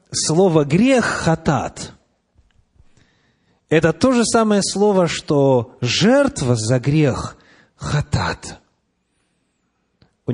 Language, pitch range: Russian, 110-150 Hz